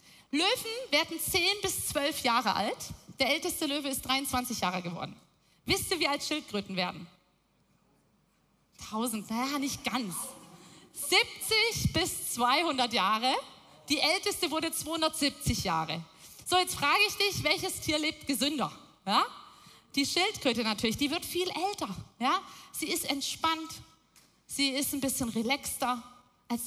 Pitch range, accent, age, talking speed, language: 245-315 Hz, German, 30-49, 130 wpm, German